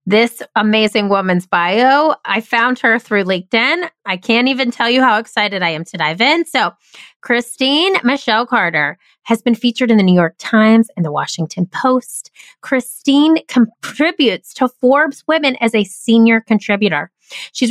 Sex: female